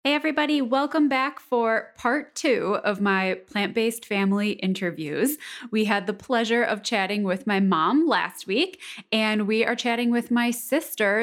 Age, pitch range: 10-29, 190-250 Hz